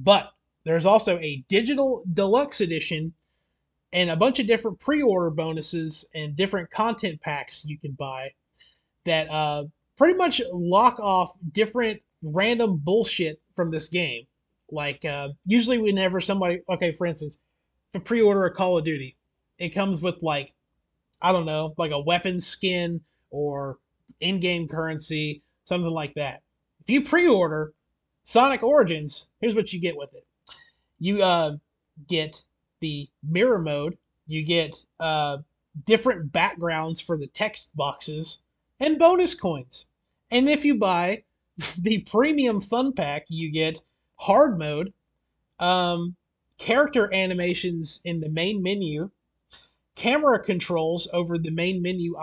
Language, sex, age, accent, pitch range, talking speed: English, male, 30-49, American, 155-210 Hz, 135 wpm